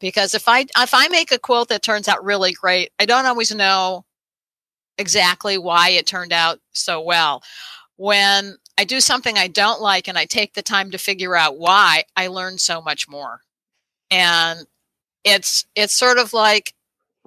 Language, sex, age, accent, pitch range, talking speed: English, female, 50-69, American, 175-215 Hz, 175 wpm